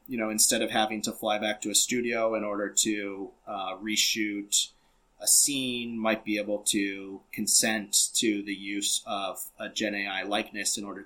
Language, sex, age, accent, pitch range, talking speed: English, male, 30-49, American, 100-115 Hz, 180 wpm